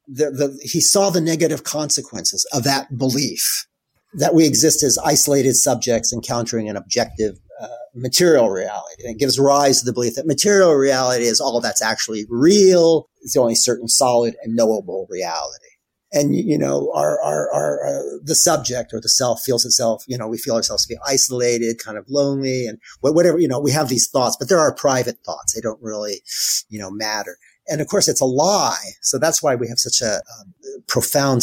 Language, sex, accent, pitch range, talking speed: English, male, American, 115-145 Hz, 195 wpm